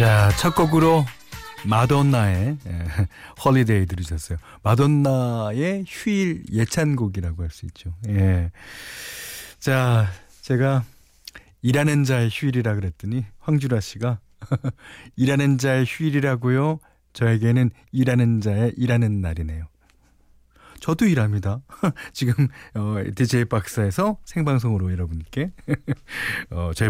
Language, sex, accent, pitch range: Korean, male, native, 100-145 Hz